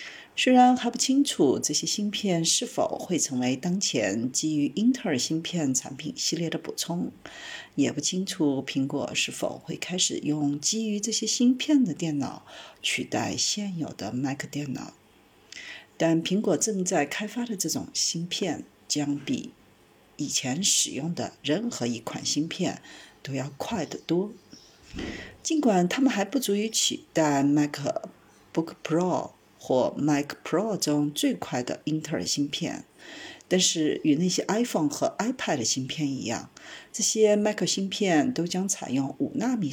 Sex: female